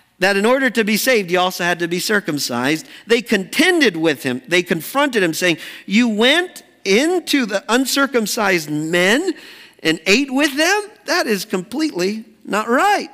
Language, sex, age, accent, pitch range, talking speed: English, male, 50-69, American, 165-250 Hz, 160 wpm